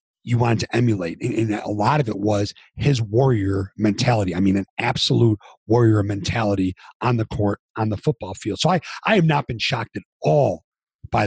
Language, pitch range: English, 105-145 Hz